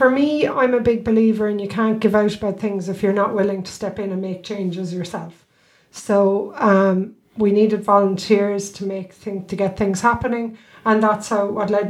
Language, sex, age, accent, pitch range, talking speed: English, female, 30-49, Irish, 195-220 Hz, 205 wpm